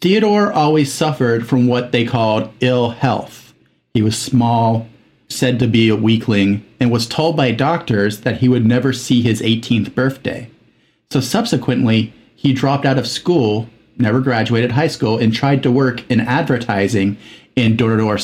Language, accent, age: English, American, 40-59